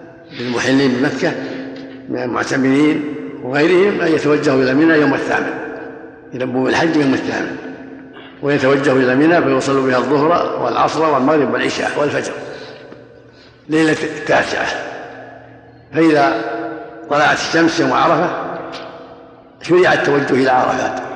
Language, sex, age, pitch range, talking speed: Arabic, male, 60-79, 125-155 Hz, 100 wpm